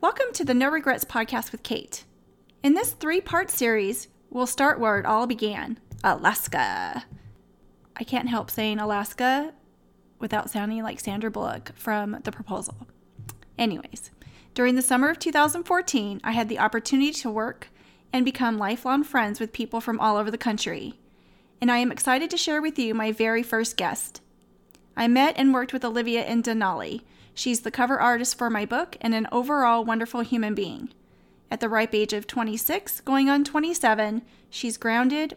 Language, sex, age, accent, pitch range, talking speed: English, female, 30-49, American, 225-270 Hz, 170 wpm